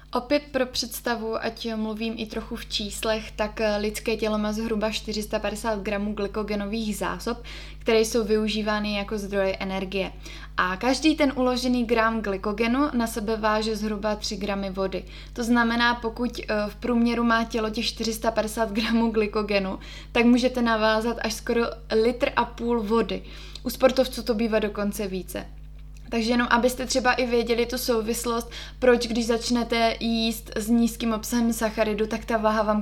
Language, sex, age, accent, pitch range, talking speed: Czech, female, 20-39, native, 210-235 Hz, 150 wpm